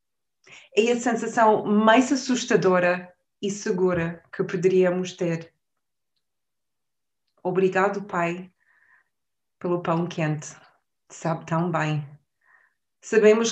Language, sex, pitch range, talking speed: Portuguese, female, 180-215 Hz, 85 wpm